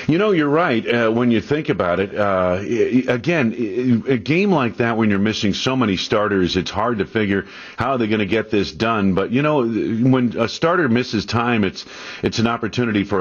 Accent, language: American, English